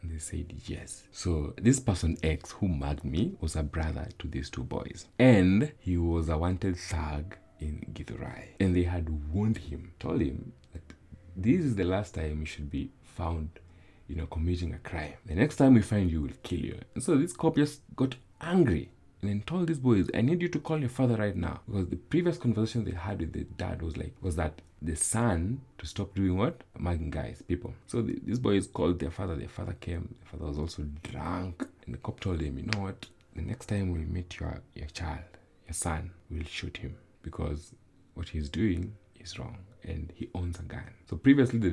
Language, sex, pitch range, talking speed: English, male, 80-105 Hz, 215 wpm